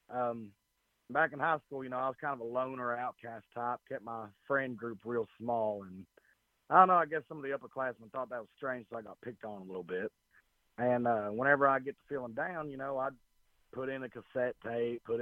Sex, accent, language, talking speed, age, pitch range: male, American, English, 235 wpm, 30-49, 110-135 Hz